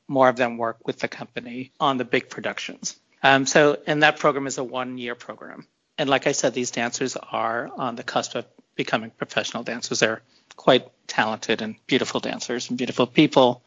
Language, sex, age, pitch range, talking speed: English, male, 40-59, 115-135 Hz, 195 wpm